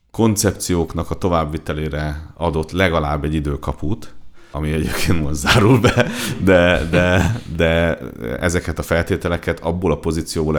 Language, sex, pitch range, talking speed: Hungarian, male, 75-90 Hz, 120 wpm